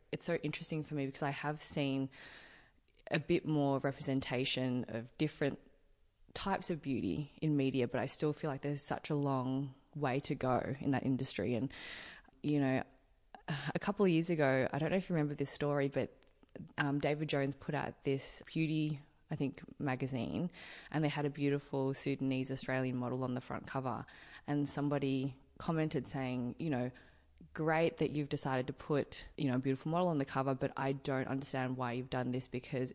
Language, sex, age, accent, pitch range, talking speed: English, female, 20-39, Australian, 135-155 Hz, 190 wpm